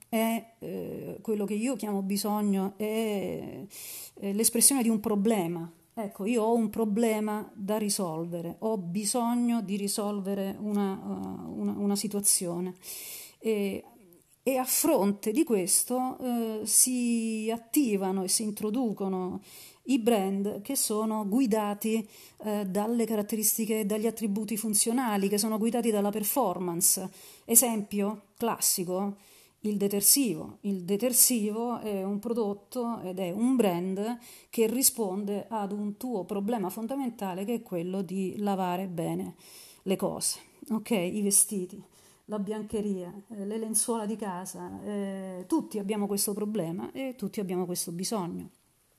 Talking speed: 120 wpm